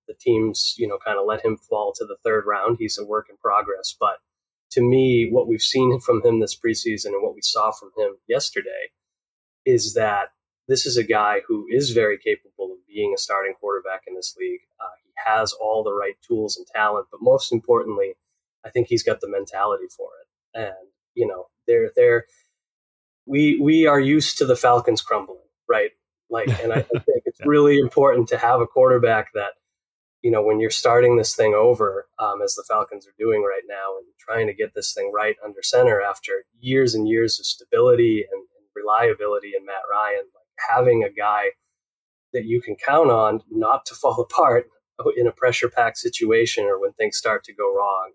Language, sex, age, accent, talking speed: English, male, 20-39, American, 200 wpm